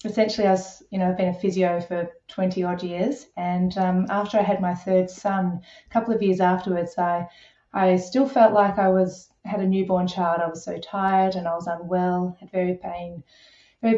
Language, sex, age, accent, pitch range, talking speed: English, female, 20-39, Australian, 180-200 Hz, 210 wpm